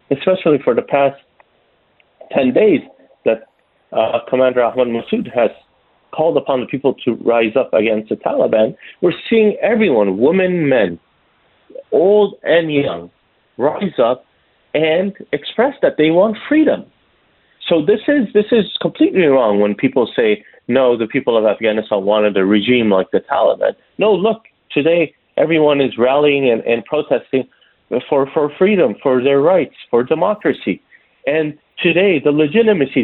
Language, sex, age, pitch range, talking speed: English, male, 30-49, 135-210 Hz, 145 wpm